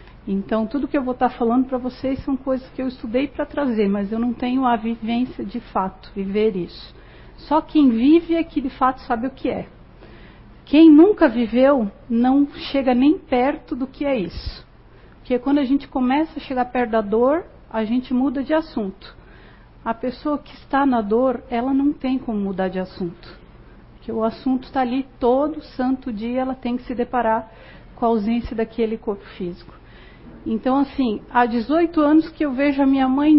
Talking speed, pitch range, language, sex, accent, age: 190 wpm, 225-265 Hz, Portuguese, female, Brazilian, 50-69